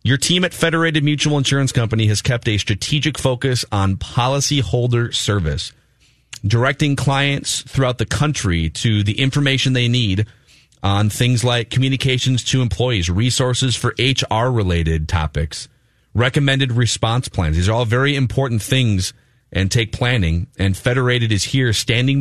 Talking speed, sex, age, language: 140 wpm, male, 30-49, English